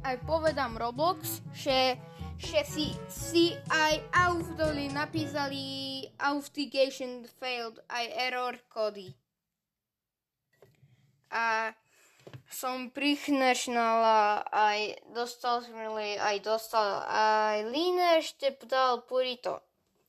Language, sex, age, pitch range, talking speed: Slovak, female, 10-29, 210-270 Hz, 85 wpm